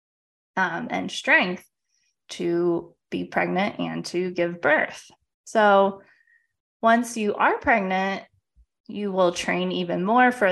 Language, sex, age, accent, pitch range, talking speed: English, female, 20-39, American, 180-235 Hz, 120 wpm